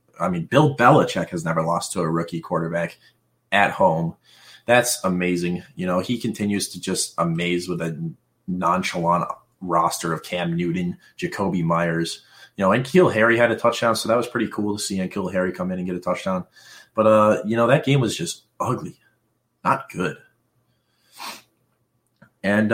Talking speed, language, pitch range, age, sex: 175 wpm, English, 90-125 Hz, 30-49, male